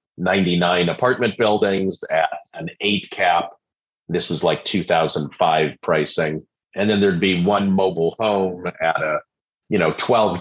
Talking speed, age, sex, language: 140 wpm, 40-59, male, English